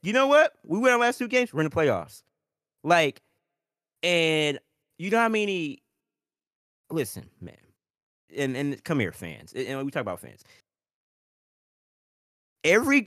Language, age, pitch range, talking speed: English, 20-39, 105-150 Hz, 150 wpm